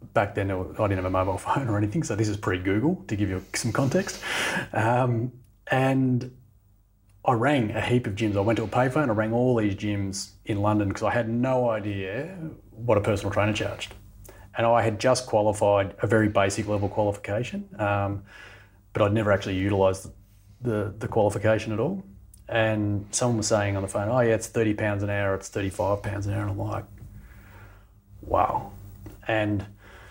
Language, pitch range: English, 100-115 Hz